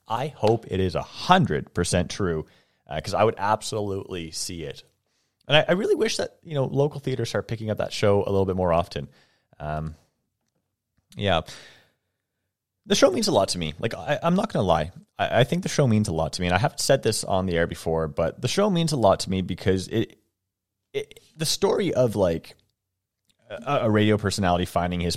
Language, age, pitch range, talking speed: English, 30-49, 85-110 Hz, 210 wpm